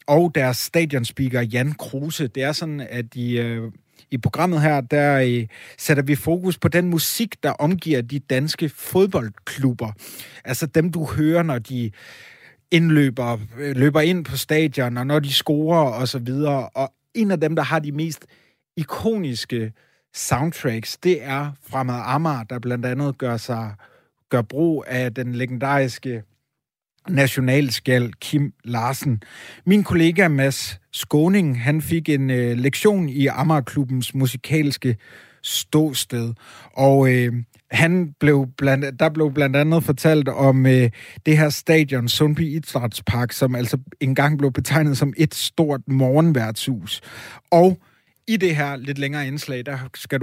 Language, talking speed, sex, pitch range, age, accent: Danish, 140 wpm, male, 125-155 Hz, 30-49, native